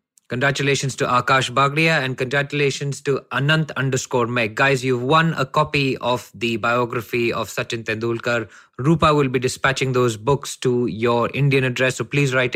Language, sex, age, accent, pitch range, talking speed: English, male, 20-39, Indian, 120-150 Hz, 160 wpm